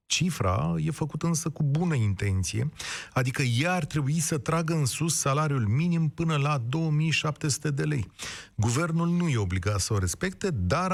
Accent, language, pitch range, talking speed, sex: native, Romanian, 115-160 Hz, 165 wpm, male